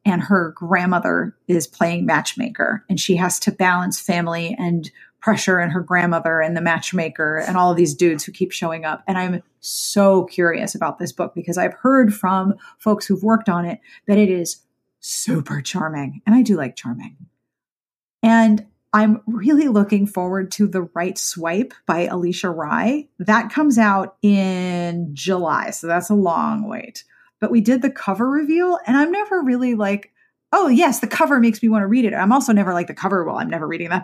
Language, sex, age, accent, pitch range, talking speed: English, female, 30-49, American, 180-225 Hz, 190 wpm